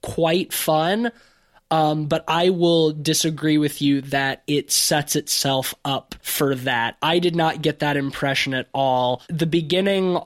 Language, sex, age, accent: English, male, 20-39, American